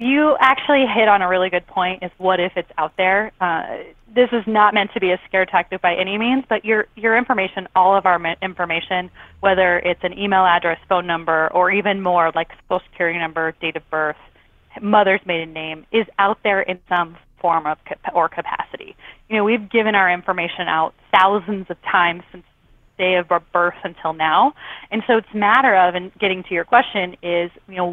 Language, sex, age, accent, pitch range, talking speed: English, female, 20-39, American, 175-210 Hz, 200 wpm